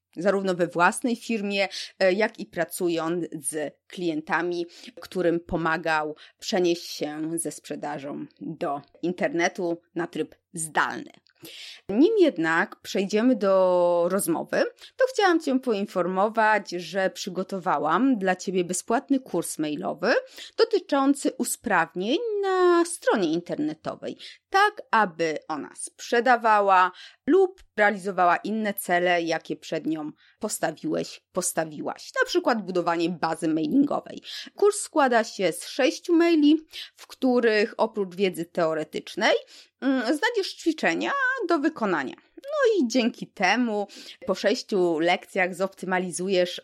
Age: 20-39